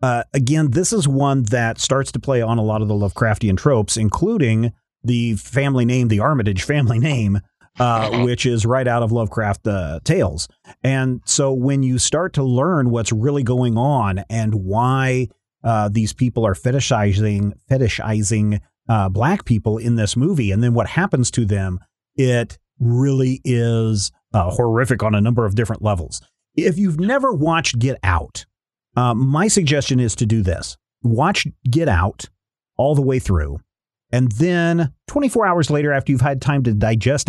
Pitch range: 110-135 Hz